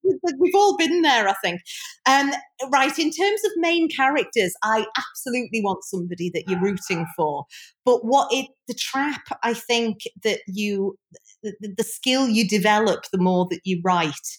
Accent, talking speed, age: British, 165 wpm, 40-59